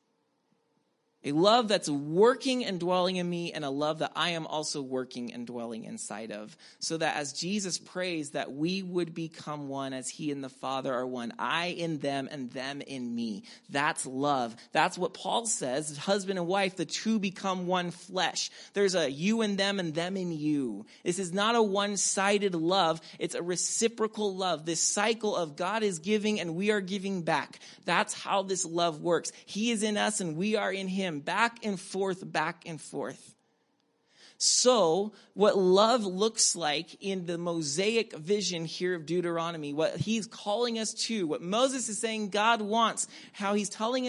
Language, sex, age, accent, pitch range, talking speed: English, male, 30-49, American, 160-215 Hz, 180 wpm